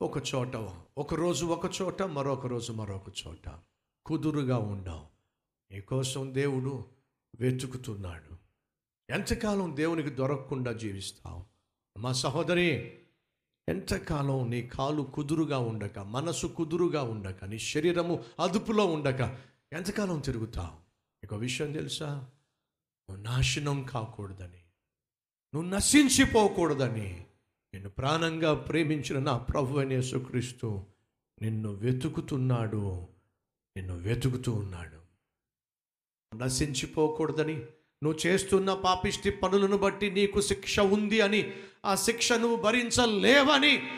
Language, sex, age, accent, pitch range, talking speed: Telugu, male, 60-79, native, 110-165 Hz, 85 wpm